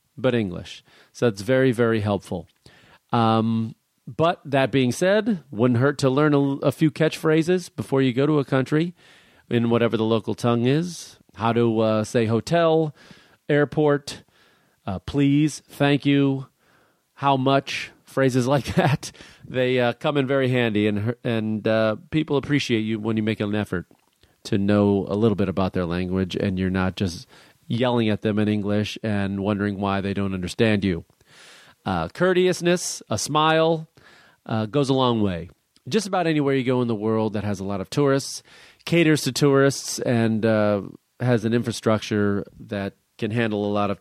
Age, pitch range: 40-59, 110-145 Hz